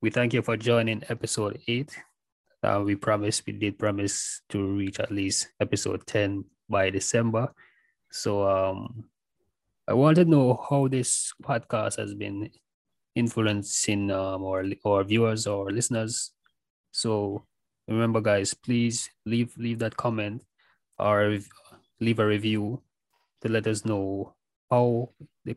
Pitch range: 100-115 Hz